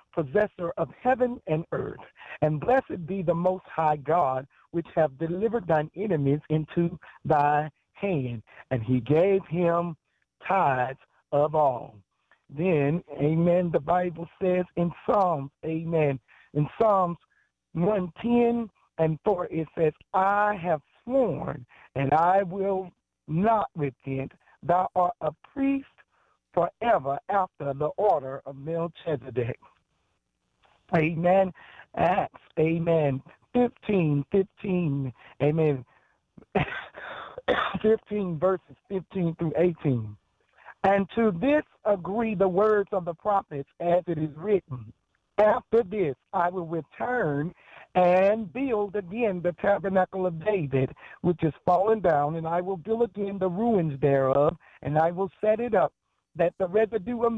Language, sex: English, male